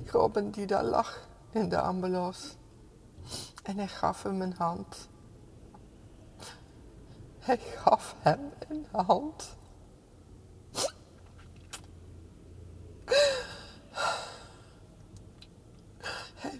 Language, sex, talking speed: Dutch, female, 70 wpm